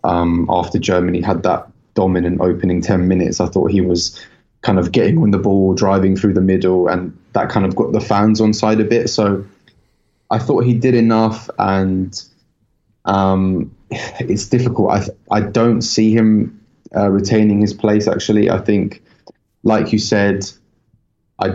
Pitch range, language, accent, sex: 95-105 Hz, English, British, male